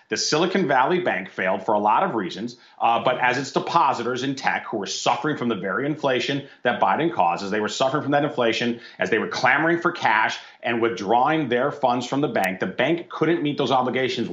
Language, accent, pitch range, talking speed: English, American, 120-150 Hz, 220 wpm